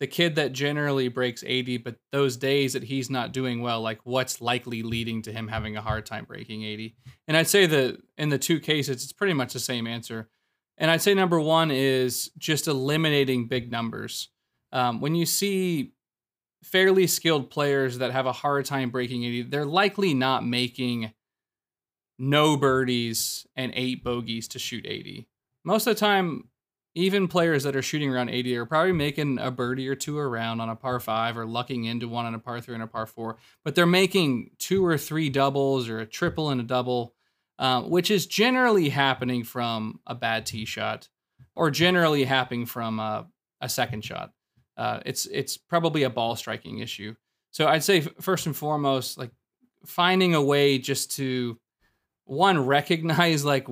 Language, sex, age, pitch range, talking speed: English, male, 20-39, 120-155 Hz, 185 wpm